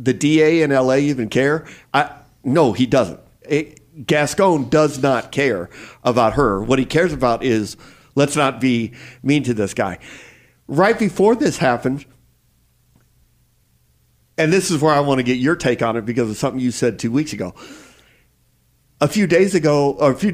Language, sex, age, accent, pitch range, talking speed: English, male, 50-69, American, 120-150 Hz, 175 wpm